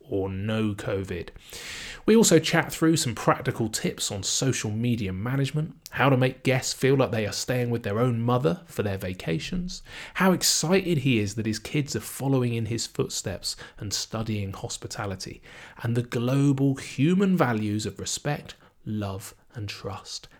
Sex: male